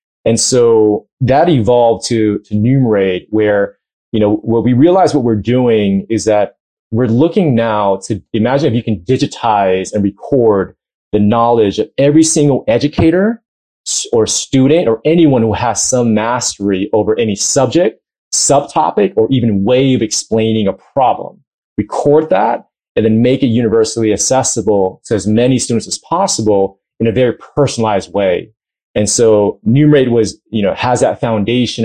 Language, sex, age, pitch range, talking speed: English, male, 30-49, 105-125 Hz, 155 wpm